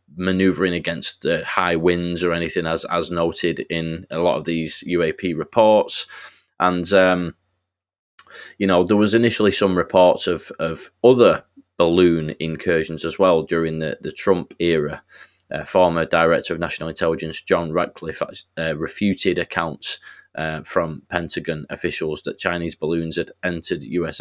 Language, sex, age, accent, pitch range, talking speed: English, male, 20-39, British, 80-90 Hz, 145 wpm